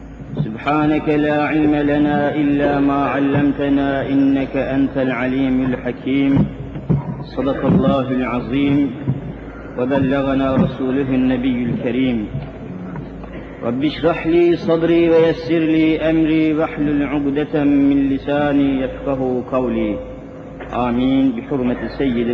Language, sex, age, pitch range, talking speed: Turkish, male, 50-69, 130-145 Hz, 90 wpm